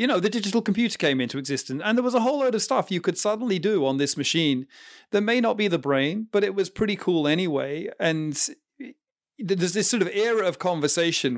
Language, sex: English, male